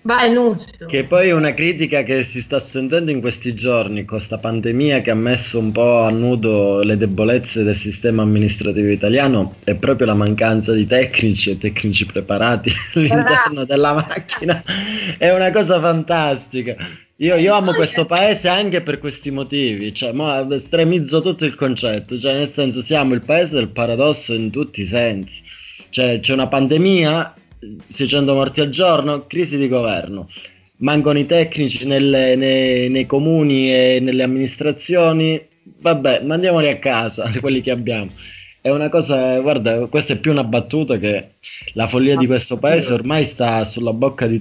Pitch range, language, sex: 115-150 Hz, Italian, male